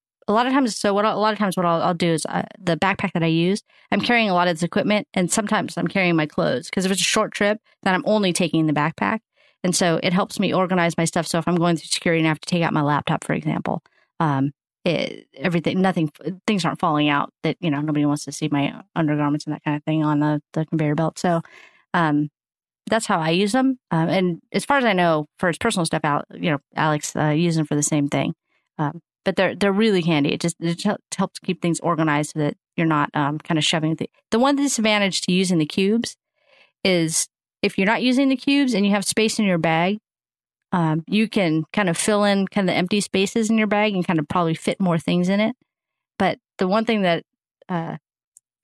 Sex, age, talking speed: female, 30-49, 250 wpm